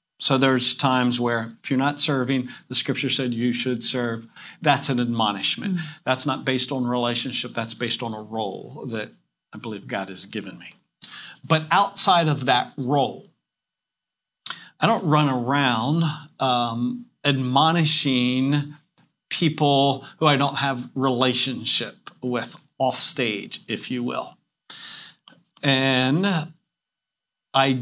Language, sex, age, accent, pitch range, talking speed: English, male, 50-69, American, 125-145 Hz, 125 wpm